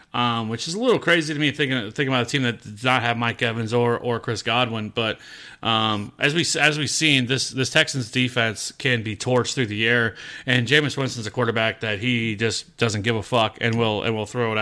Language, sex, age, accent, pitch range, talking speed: English, male, 30-49, American, 115-135 Hz, 240 wpm